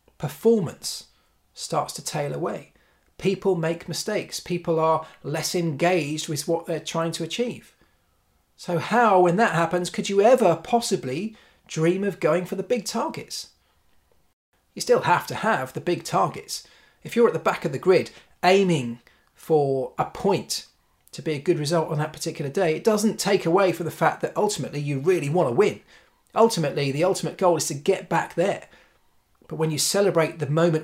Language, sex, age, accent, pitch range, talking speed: English, male, 30-49, British, 155-195 Hz, 180 wpm